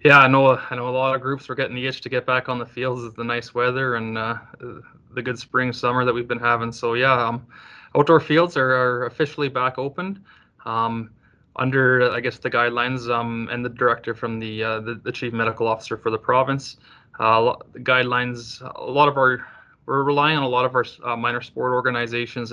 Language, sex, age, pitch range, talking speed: English, male, 20-39, 110-130 Hz, 220 wpm